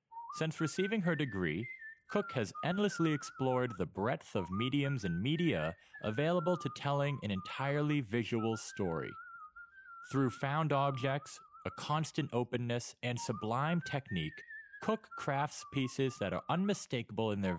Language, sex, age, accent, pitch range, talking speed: English, male, 30-49, American, 125-190 Hz, 130 wpm